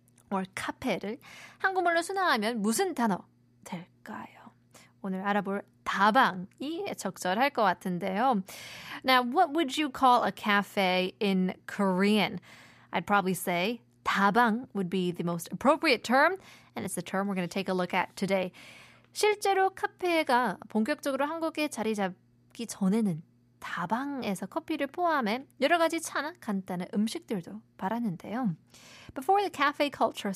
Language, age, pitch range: Korean, 20-39, 185-270 Hz